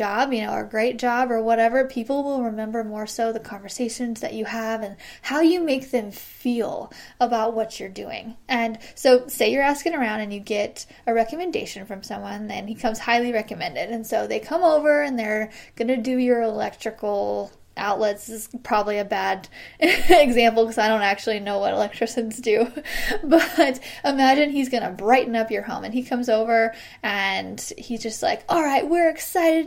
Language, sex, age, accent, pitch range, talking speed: English, female, 10-29, American, 225-280 Hz, 190 wpm